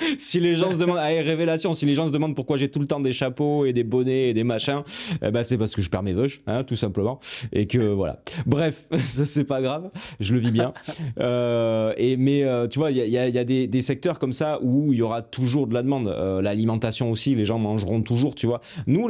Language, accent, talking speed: French, French, 265 wpm